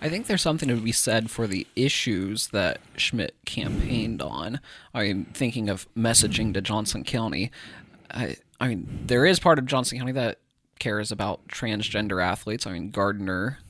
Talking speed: 165 wpm